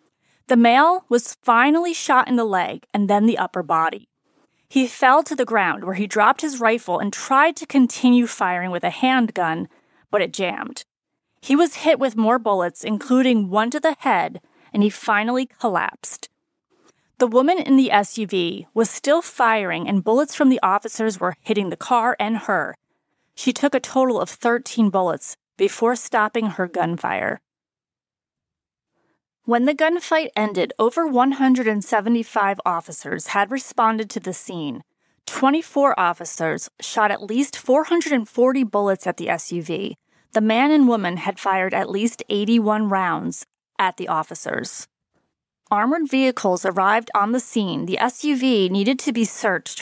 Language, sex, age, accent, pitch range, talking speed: English, female, 30-49, American, 200-265 Hz, 150 wpm